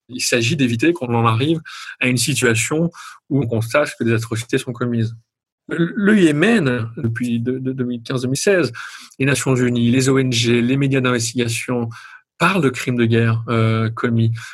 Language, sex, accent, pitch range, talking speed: French, male, French, 120-155 Hz, 145 wpm